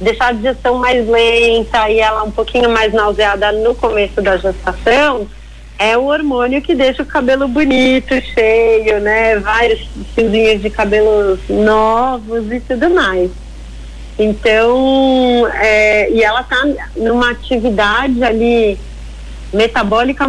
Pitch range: 210-250 Hz